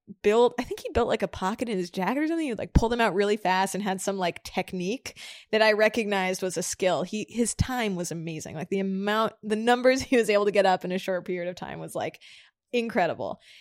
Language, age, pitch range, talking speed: English, 20-39, 175-220 Hz, 250 wpm